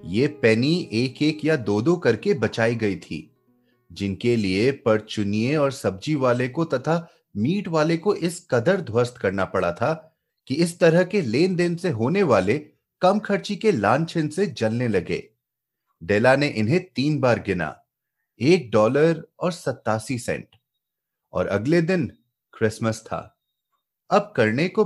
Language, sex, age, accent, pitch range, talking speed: Hindi, male, 30-49, native, 110-175 Hz, 150 wpm